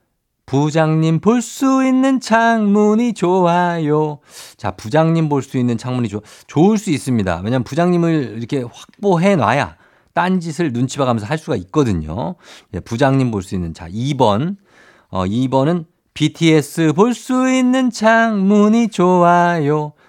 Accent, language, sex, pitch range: native, Korean, male, 110-175 Hz